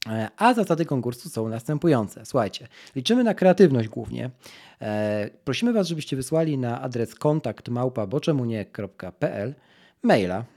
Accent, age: native, 40-59